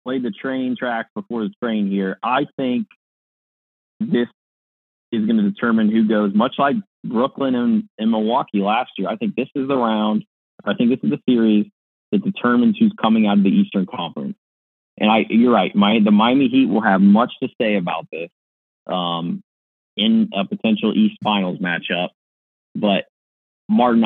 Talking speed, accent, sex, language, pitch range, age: 175 wpm, American, male, English, 95-140 Hz, 30-49